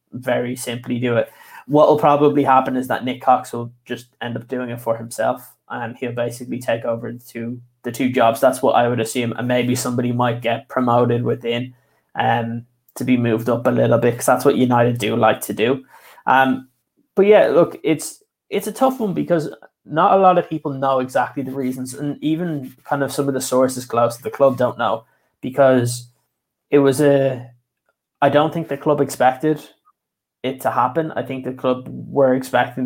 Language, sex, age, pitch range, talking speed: English, male, 20-39, 120-135 Hz, 200 wpm